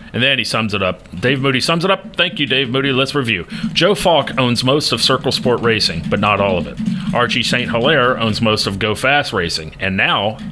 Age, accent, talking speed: 40-59, American, 235 wpm